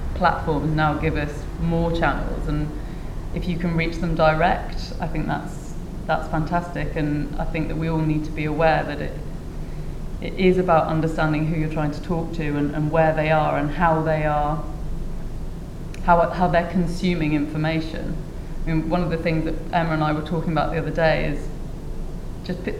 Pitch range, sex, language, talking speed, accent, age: 155-170 Hz, female, English, 190 wpm, British, 30-49